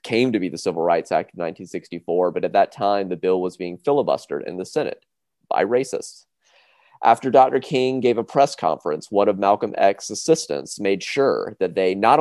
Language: English